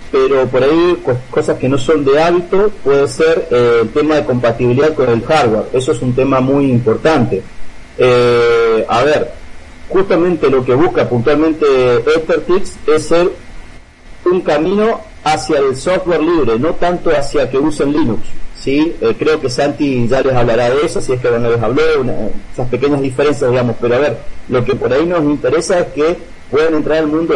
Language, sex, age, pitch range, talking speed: Spanish, male, 40-59, 120-175 Hz, 190 wpm